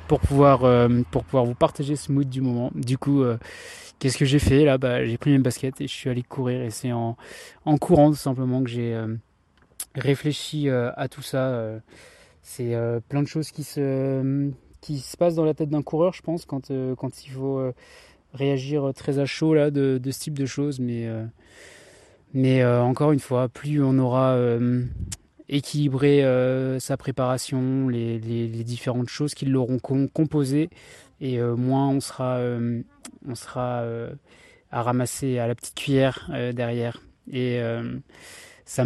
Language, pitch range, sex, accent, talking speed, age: French, 125-145 Hz, male, French, 190 wpm, 20-39